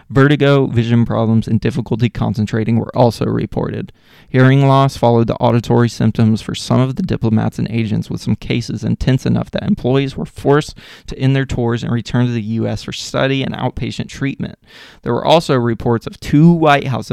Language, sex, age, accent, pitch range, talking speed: English, male, 20-39, American, 115-135 Hz, 185 wpm